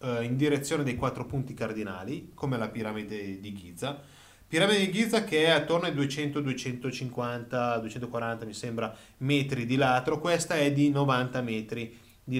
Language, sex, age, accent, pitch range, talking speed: Italian, male, 30-49, native, 125-160 Hz, 145 wpm